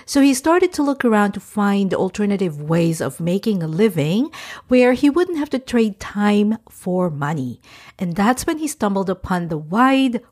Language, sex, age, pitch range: English, female, 50-69, 170-245 Hz